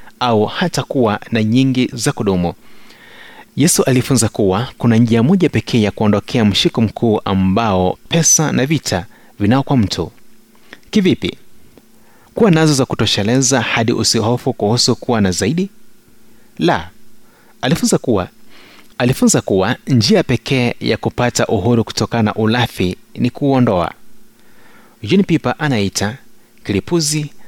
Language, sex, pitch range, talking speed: Swahili, male, 110-135 Hz, 120 wpm